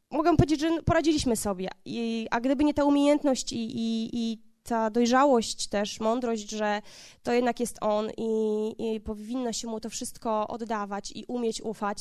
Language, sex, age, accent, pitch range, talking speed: Polish, female, 20-39, native, 225-270 Hz, 165 wpm